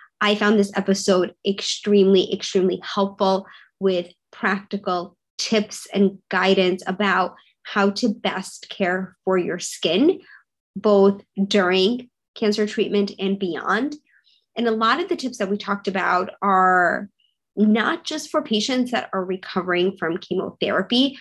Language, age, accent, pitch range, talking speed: English, 20-39, American, 190-215 Hz, 130 wpm